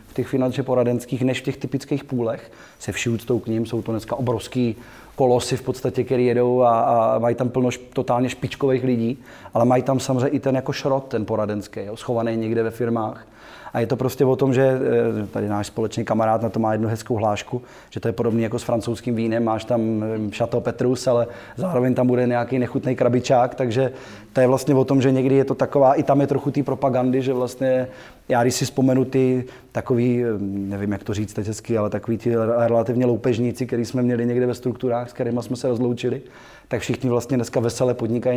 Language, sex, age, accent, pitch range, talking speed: Czech, male, 20-39, native, 115-130 Hz, 210 wpm